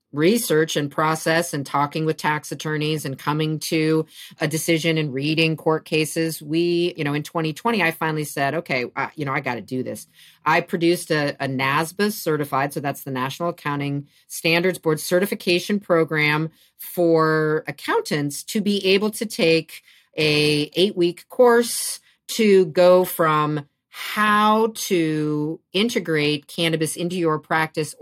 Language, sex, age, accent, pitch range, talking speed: English, female, 40-59, American, 150-195 Hz, 150 wpm